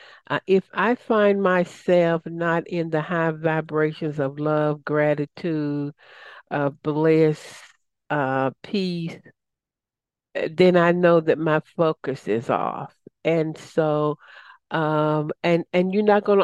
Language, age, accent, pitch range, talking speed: English, 60-79, American, 155-175 Hz, 125 wpm